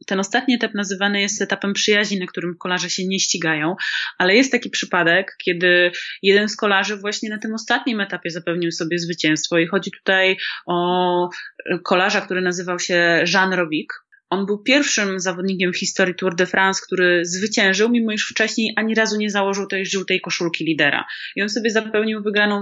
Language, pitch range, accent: Polish, 185-230 Hz, native